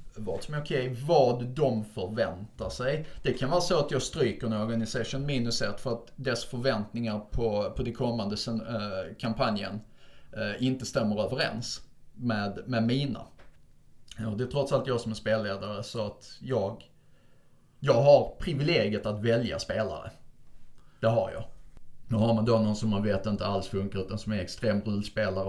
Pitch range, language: 100-120 Hz, Swedish